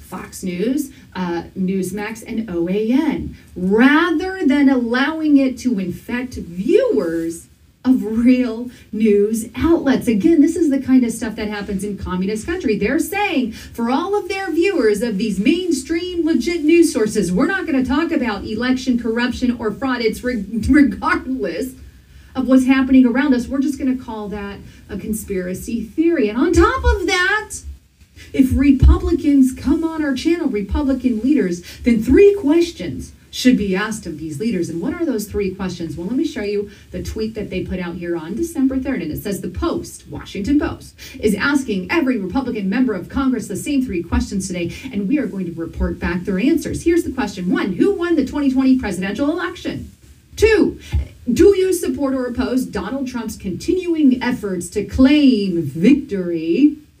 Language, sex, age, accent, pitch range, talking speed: English, female, 40-59, American, 205-295 Hz, 170 wpm